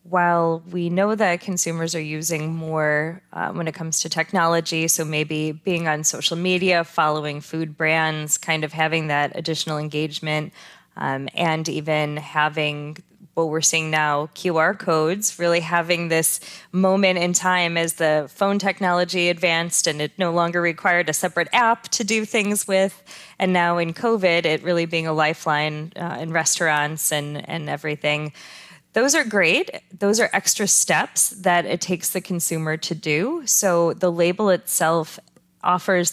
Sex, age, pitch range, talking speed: female, 20-39, 155-185 Hz, 160 wpm